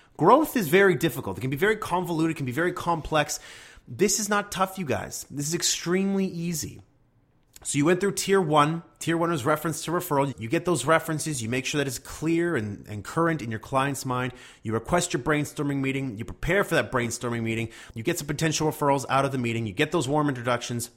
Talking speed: 225 wpm